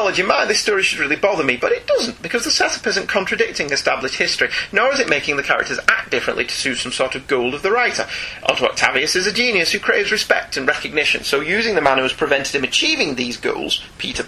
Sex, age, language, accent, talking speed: male, 30-49, English, British, 235 wpm